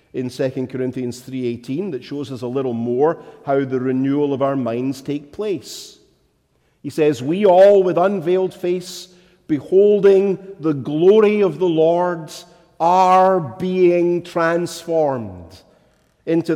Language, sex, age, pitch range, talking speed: English, male, 50-69, 130-185 Hz, 125 wpm